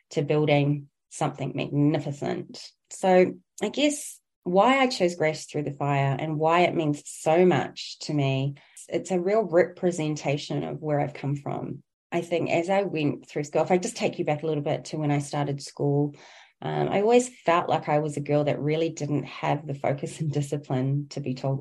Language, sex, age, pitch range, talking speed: English, female, 30-49, 145-180 Hz, 200 wpm